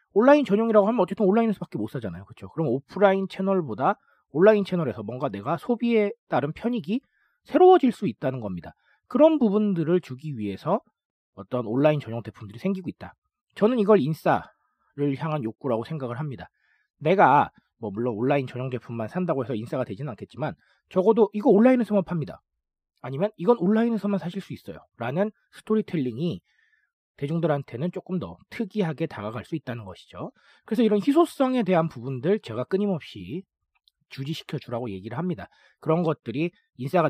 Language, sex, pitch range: Korean, male, 130-205 Hz